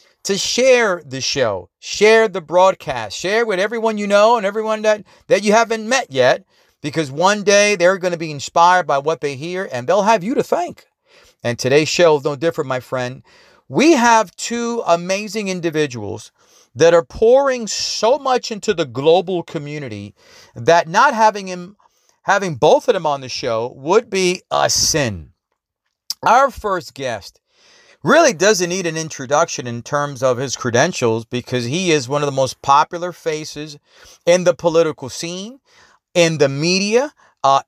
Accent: American